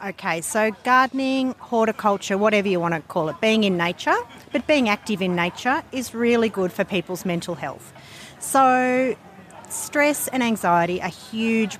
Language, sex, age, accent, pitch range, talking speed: English, female, 40-59, Australian, 185-240 Hz, 160 wpm